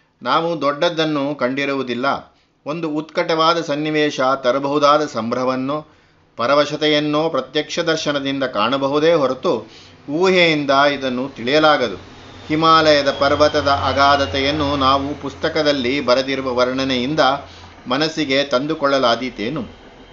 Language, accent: Kannada, native